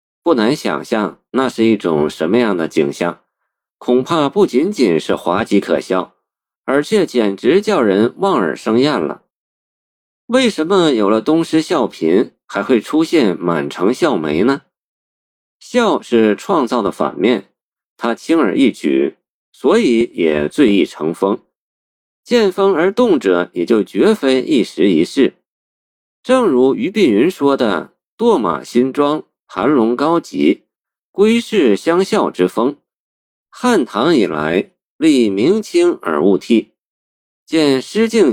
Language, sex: Chinese, male